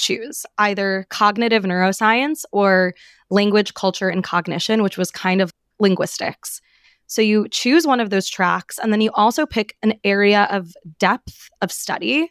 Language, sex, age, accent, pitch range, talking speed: English, female, 20-39, American, 190-225 Hz, 155 wpm